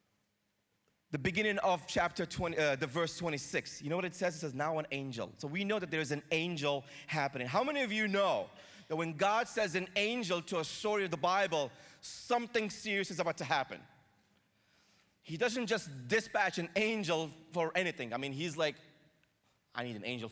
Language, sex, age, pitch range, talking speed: English, male, 30-49, 140-195 Hz, 200 wpm